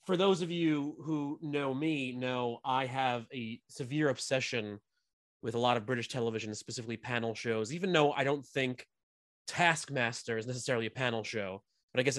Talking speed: 175 wpm